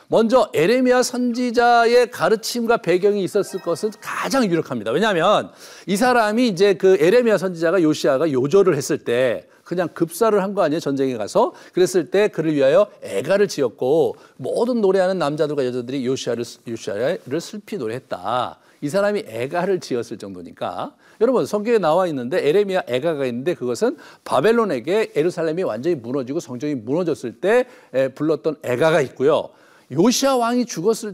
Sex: male